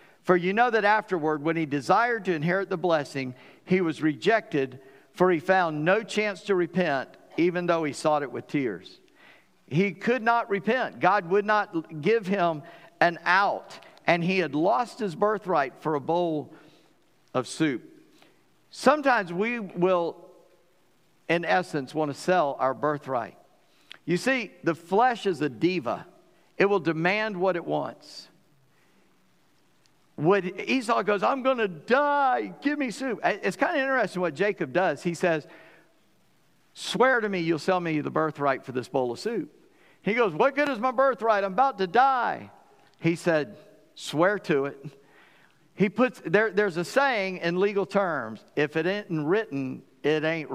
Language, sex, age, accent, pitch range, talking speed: English, male, 50-69, American, 155-215 Hz, 160 wpm